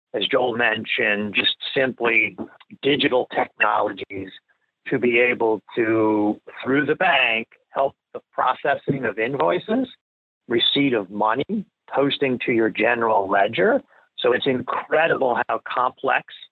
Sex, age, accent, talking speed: male, 50-69, American, 115 wpm